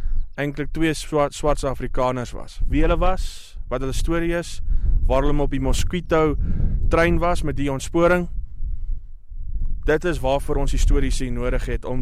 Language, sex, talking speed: English, male, 155 wpm